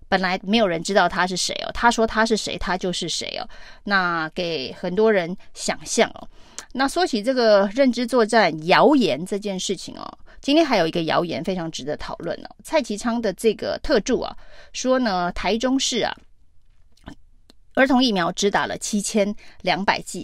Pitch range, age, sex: 185-235 Hz, 30-49, female